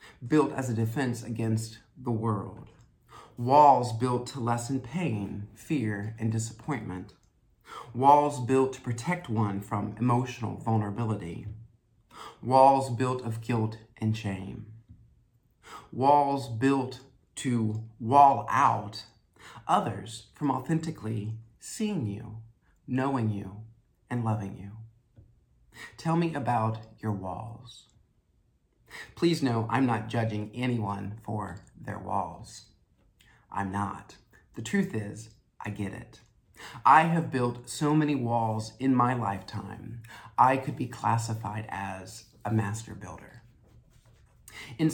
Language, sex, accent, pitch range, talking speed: English, male, American, 110-130 Hz, 110 wpm